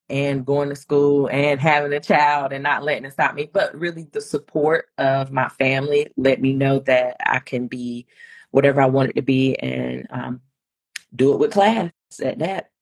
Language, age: English, 30-49